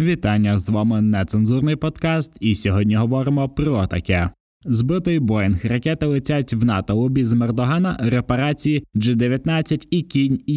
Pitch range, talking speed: 115-145 Hz, 120 wpm